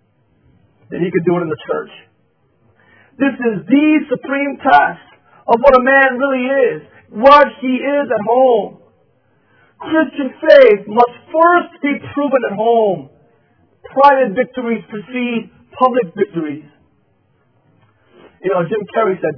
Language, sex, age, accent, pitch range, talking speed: English, male, 40-59, American, 150-235 Hz, 130 wpm